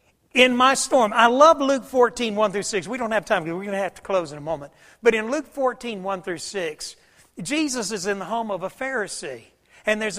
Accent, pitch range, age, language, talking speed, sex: American, 195-255 Hz, 60-79, English, 240 wpm, male